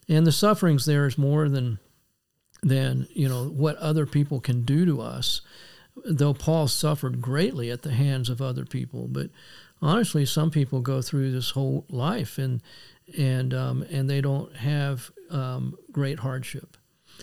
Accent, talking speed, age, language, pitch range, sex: American, 160 wpm, 50-69, English, 130-155 Hz, male